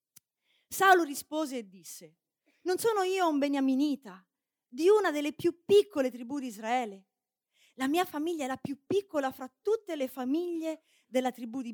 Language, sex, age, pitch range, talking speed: Italian, female, 30-49, 240-335 Hz, 160 wpm